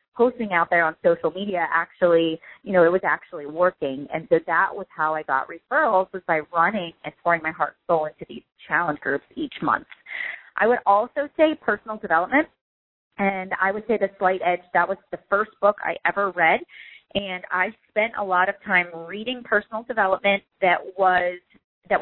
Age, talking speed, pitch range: 30-49, 190 wpm, 165-210 Hz